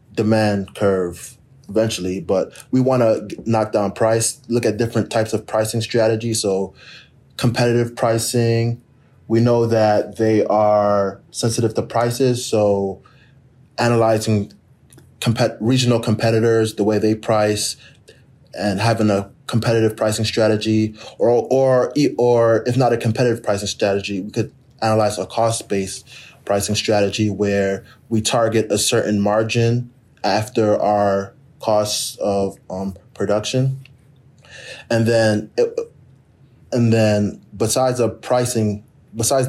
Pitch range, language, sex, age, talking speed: 105-125 Hz, English, male, 20-39, 120 wpm